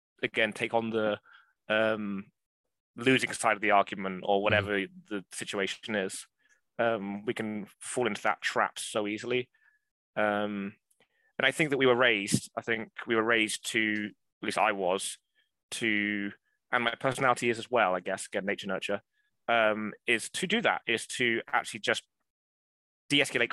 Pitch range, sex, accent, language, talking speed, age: 100-115 Hz, male, British, English, 165 wpm, 20-39